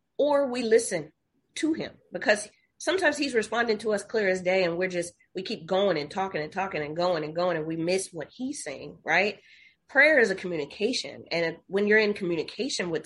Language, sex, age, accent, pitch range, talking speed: English, female, 30-49, American, 170-220 Hz, 205 wpm